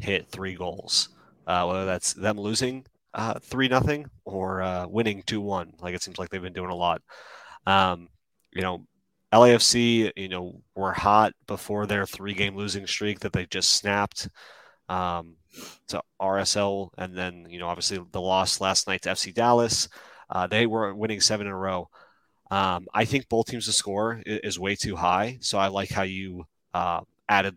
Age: 30-49